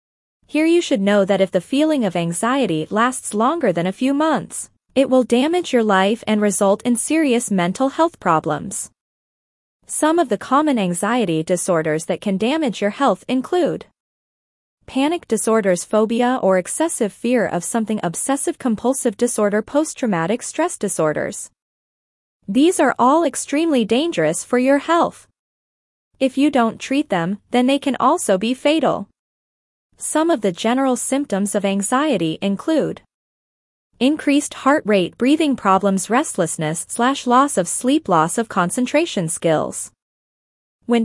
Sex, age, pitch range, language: female, 20-39, 195-275 Hz, English